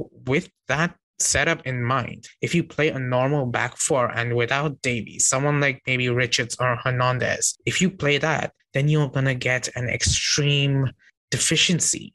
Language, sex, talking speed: English, male, 165 wpm